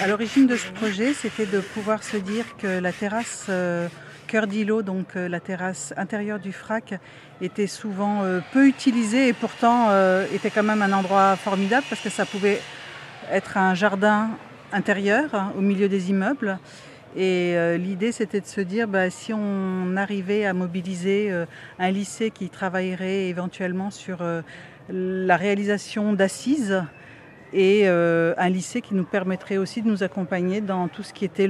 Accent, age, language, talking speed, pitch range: French, 50-69, French, 170 wpm, 175-205 Hz